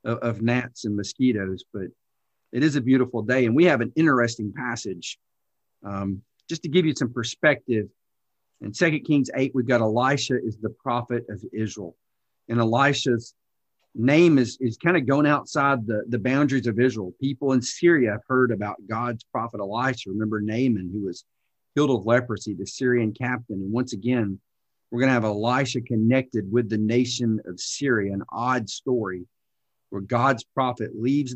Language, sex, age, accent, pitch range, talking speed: English, male, 50-69, American, 110-130 Hz, 170 wpm